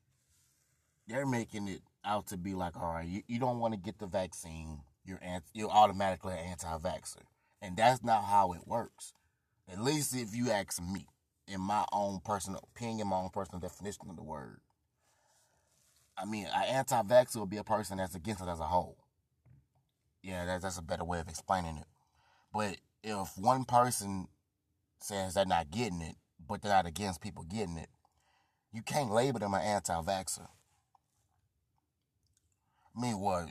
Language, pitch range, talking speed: English, 85-110 Hz, 165 wpm